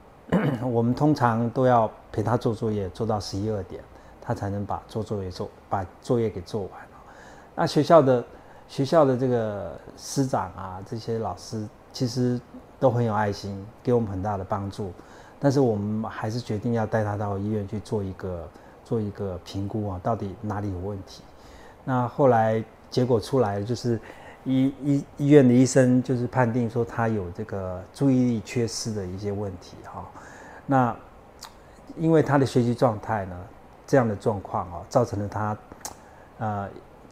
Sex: male